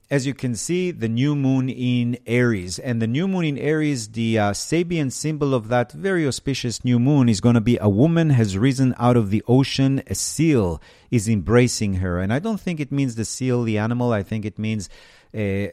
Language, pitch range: English, 100-130 Hz